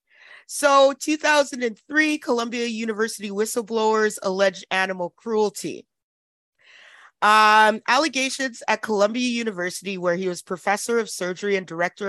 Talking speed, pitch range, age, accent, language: 105 wpm, 180-225 Hz, 30-49, American, English